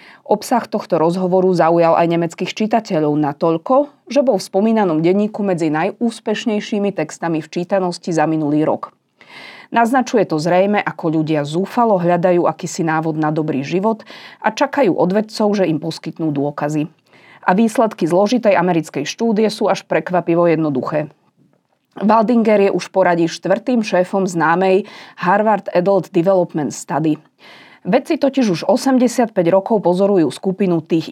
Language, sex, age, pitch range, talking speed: Slovak, female, 30-49, 160-215 Hz, 130 wpm